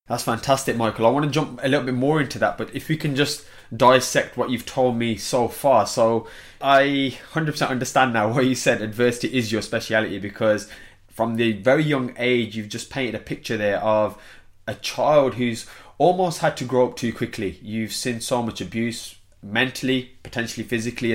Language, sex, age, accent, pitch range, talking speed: English, male, 20-39, British, 110-135 Hz, 195 wpm